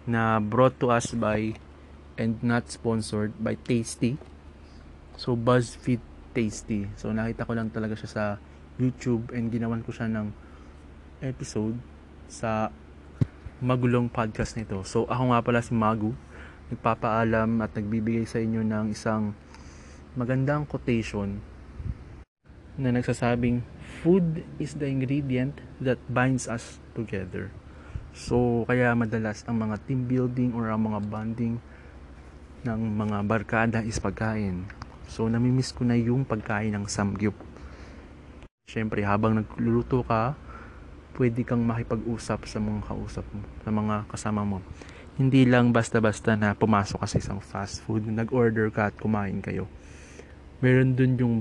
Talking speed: 130 wpm